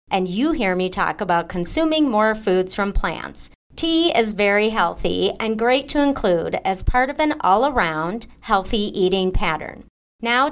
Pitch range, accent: 185-250 Hz, American